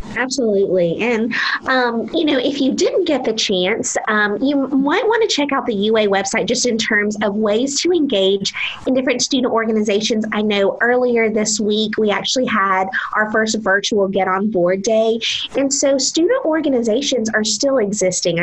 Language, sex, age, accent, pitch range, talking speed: English, female, 30-49, American, 200-245 Hz, 175 wpm